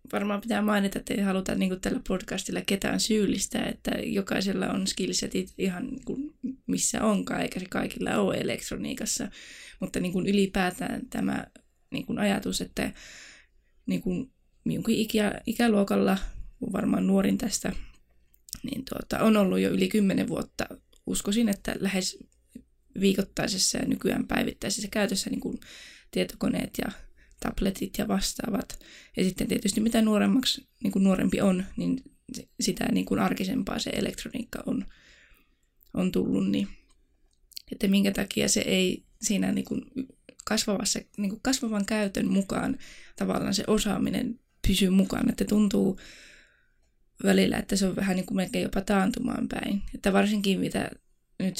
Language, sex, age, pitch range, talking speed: Finnish, female, 20-39, 190-235 Hz, 125 wpm